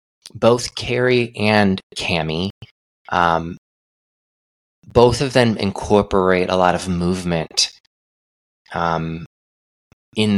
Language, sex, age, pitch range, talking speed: English, male, 20-39, 85-105 Hz, 80 wpm